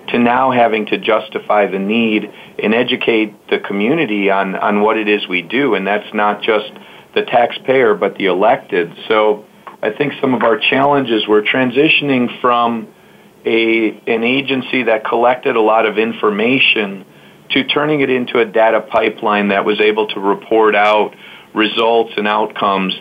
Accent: American